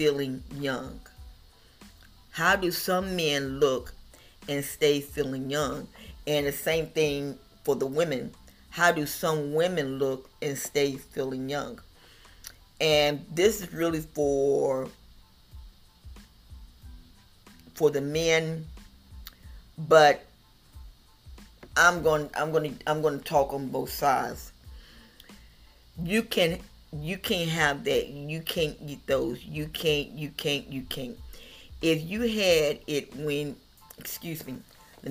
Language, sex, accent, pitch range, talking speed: English, female, American, 140-165 Hz, 125 wpm